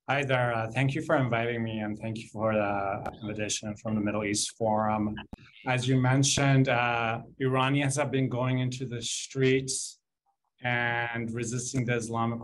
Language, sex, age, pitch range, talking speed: English, male, 30-49, 110-120 Hz, 165 wpm